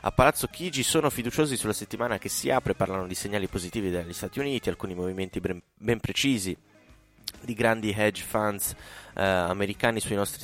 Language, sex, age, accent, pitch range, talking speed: Italian, male, 20-39, native, 95-110 Hz, 175 wpm